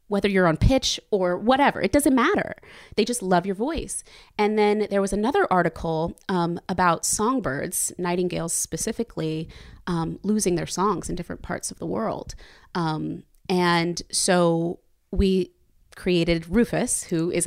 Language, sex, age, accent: English, female, 30-49, American